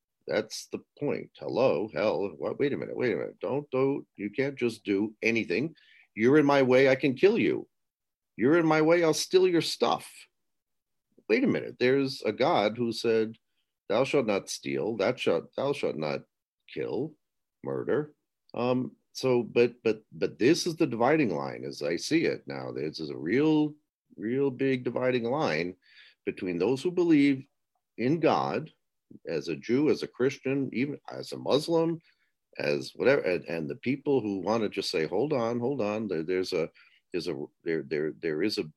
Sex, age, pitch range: male, 50-69, 100-145 Hz